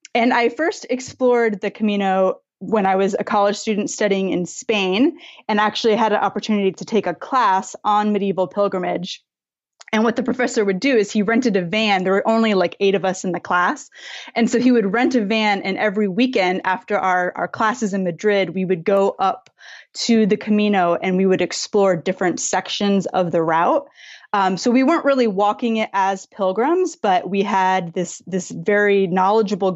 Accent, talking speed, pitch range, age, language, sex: American, 195 wpm, 190-230 Hz, 20-39, English, female